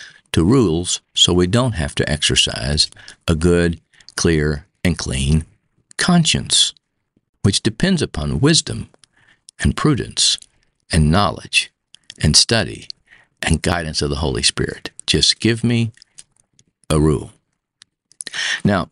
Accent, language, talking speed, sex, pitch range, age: American, English, 115 wpm, male, 80-110 Hz, 50-69